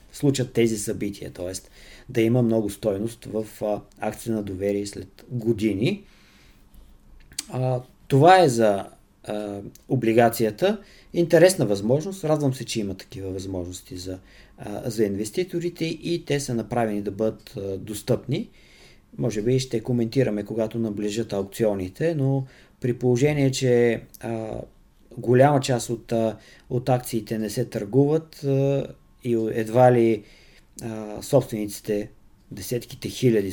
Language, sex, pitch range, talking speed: Bulgarian, male, 105-125 Hz, 125 wpm